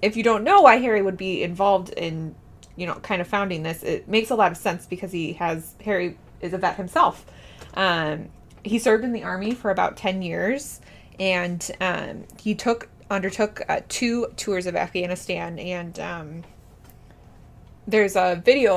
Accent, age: American, 20-39